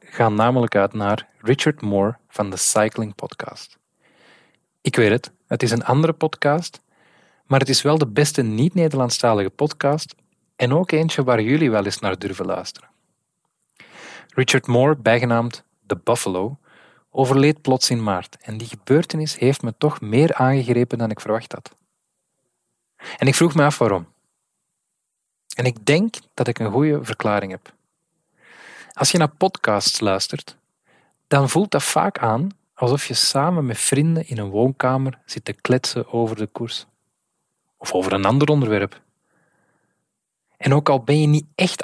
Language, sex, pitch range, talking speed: Dutch, male, 110-145 Hz, 155 wpm